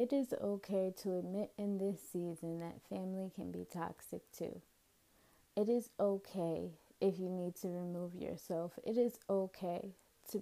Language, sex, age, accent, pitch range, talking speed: English, female, 20-39, American, 170-205 Hz, 155 wpm